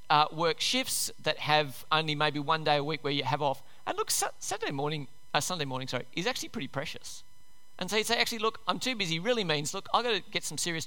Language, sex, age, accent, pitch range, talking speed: English, male, 40-59, Australian, 145-230 Hz, 250 wpm